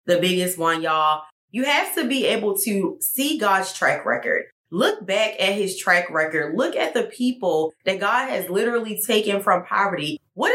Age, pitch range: 20-39, 180-235 Hz